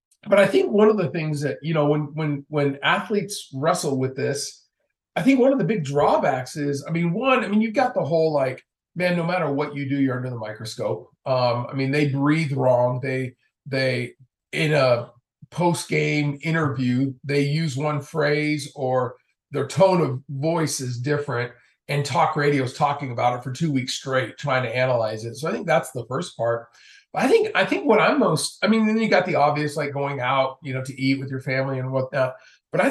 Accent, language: American, English